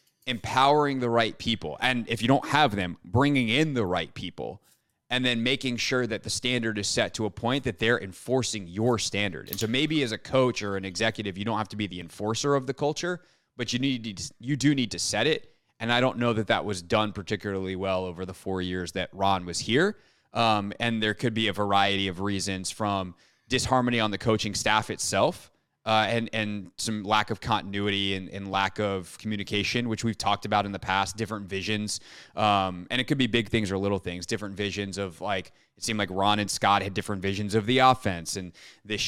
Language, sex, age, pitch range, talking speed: English, male, 20-39, 100-115 Hz, 220 wpm